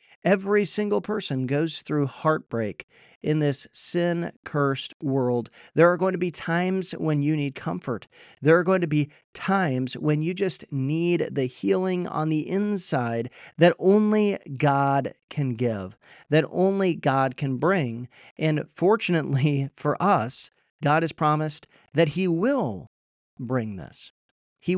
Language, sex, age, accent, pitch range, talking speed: English, male, 40-59, American, 135-180 Hz, 140 wpm